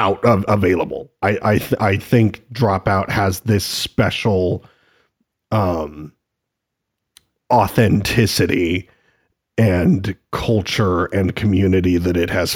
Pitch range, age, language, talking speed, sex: 90-110 Hz, 40-59, English, 100 wpm, male